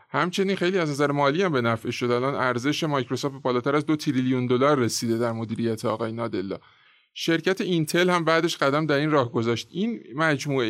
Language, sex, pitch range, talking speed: Persian, male, 120-155 Hz, 185 wpm